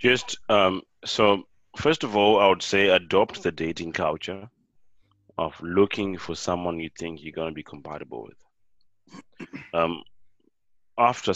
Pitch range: 80-105 Hz